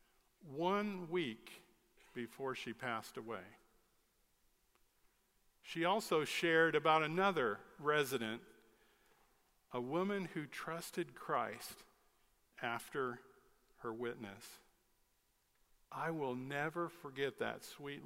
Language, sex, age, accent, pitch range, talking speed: English, male, 50-69, American, 120-180 Hz, 85 wpm